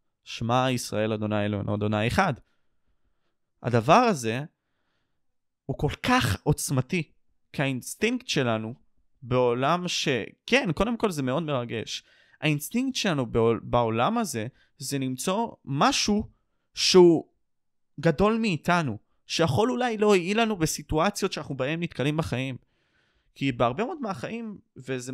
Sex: male